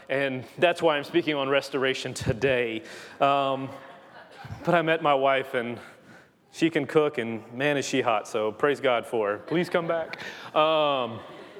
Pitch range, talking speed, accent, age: 135-180 Hz, 165 wpm, American, 30-49